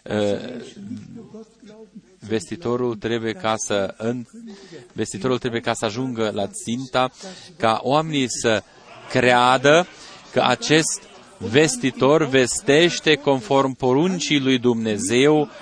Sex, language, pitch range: male, Romanian, 110-150 Hz